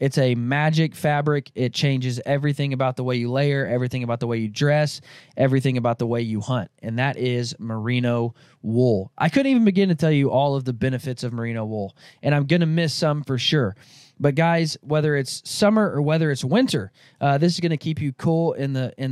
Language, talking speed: English, 215 wpm